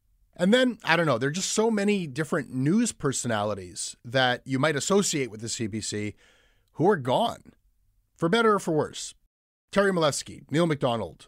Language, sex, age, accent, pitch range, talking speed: English, male, 30-49, American, 105-170 Hz, 170 wpm